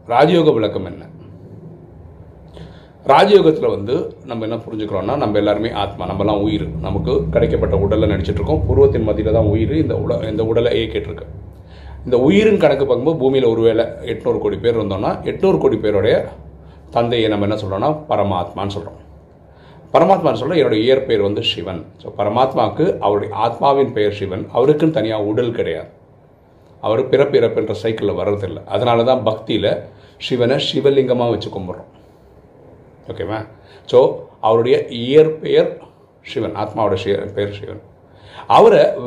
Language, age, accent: Tamil, 30-49, native